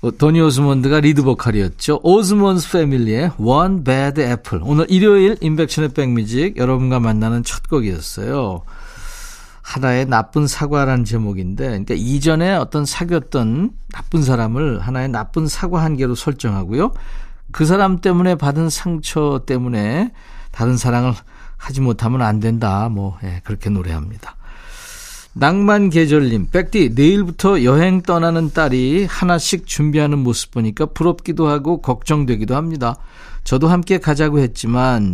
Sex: male